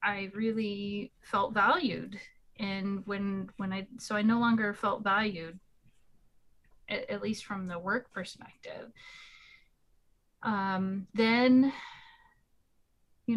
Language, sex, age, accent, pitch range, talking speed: English, female, 30-49, American, 185-220 Hz, 110 wpm